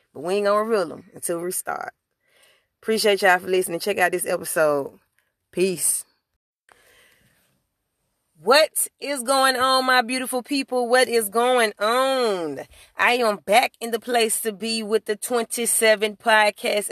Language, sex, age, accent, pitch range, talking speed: English, female, 30-49, American, 165-225 Hz, 145 wpm